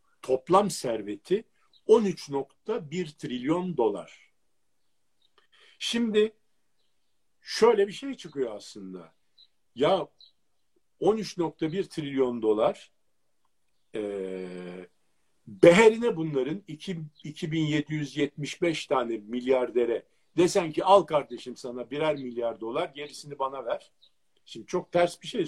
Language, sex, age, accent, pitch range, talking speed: Turkish, male, 50-69, native, 125-175 Hz, 90 wpm